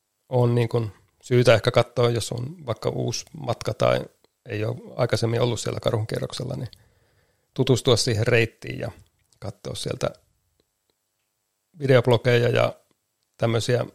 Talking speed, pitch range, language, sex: 115 wpm, 110-120 Hz, Finnish, male